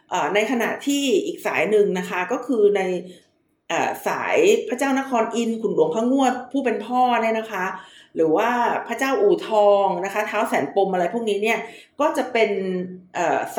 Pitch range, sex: 195-255 Hz, female